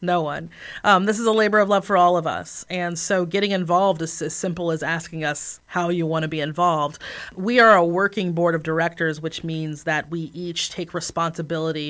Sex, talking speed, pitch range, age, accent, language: female, 215 wpm, 160-185 Hz, 30-49, American, English